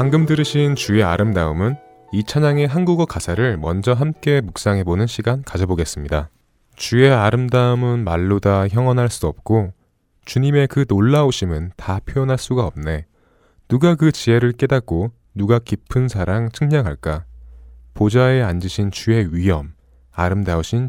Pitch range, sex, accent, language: 90-130 Hz, male, native, Korean